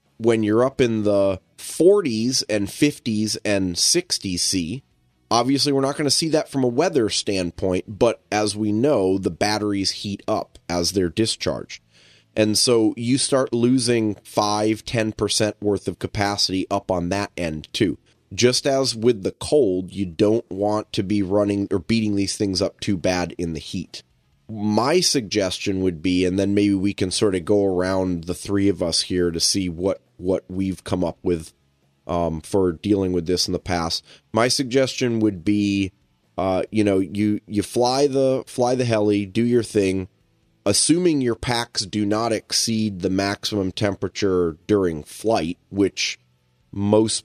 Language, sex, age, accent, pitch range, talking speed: English, male, 30-49, American, 90-110 Hz, 170 wpm